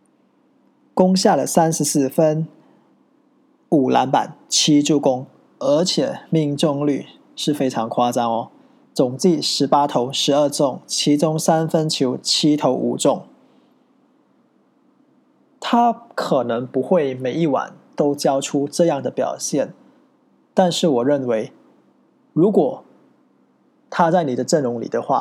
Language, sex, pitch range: English, male, 140-205 Hz